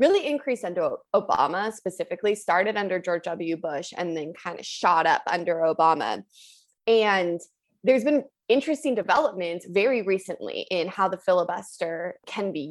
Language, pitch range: English, 170-220 Hz